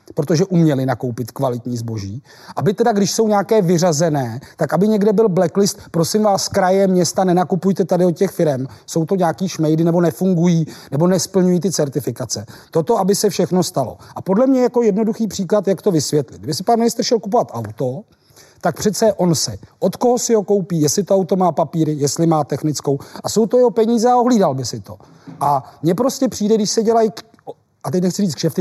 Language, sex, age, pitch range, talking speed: Czech, male, 40-59, 155-200 Hz, 200 wpm